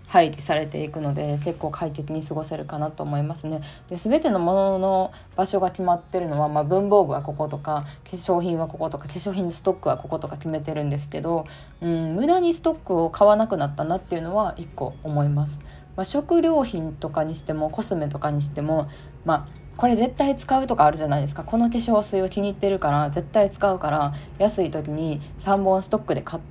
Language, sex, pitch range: Japanese, female, 150-205 Hz